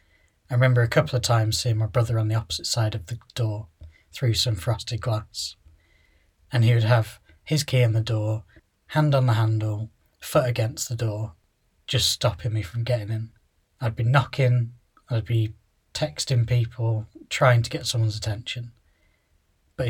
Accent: British